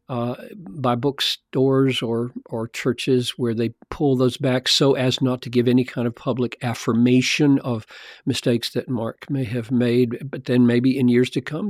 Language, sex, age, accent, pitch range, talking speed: English, male, 50-69, American, 120-150 Hz, 180 wpm